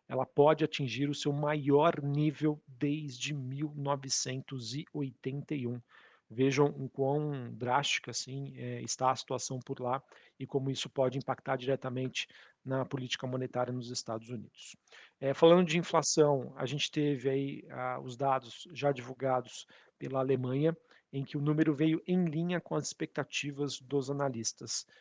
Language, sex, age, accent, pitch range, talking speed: Portuguese, male, 50-69, Brazilian, 130-150 Hz, 130 wpm